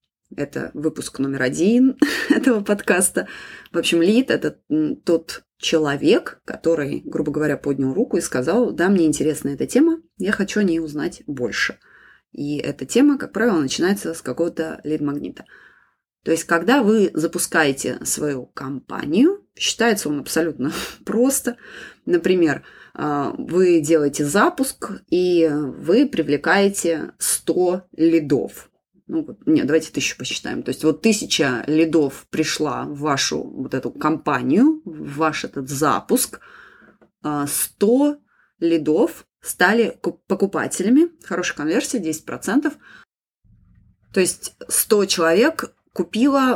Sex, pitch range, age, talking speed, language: female, 155-230 Hz, 20-39, 120 wpm, Russian